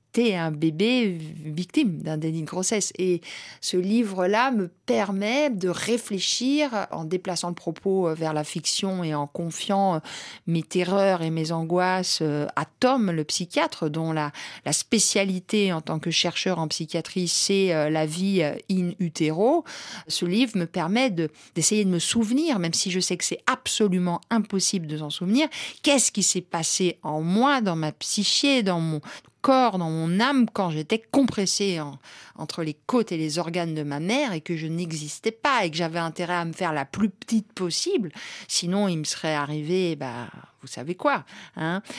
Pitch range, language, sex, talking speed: 160-205 Hz, French, female, 175 wpm